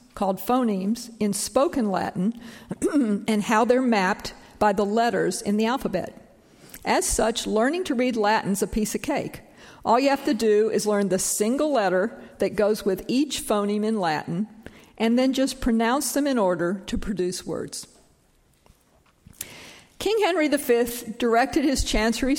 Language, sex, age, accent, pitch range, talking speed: English, female, 50-69, American, 205-250 Hz, 155 wpm